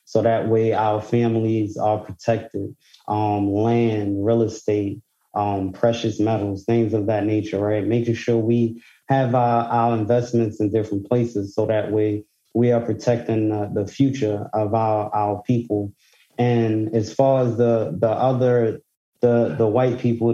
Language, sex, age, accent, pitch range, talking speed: English, male, 20-39, American, 105-115 Hz, 155 wpm